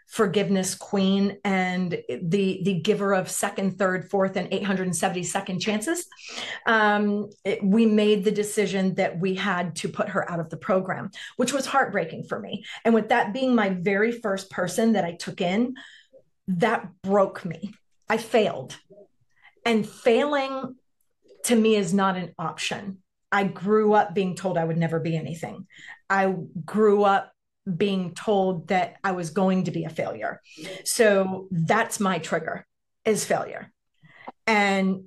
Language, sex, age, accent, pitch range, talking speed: English, female, 30-49, American, 185-220 Hz, 150 wpm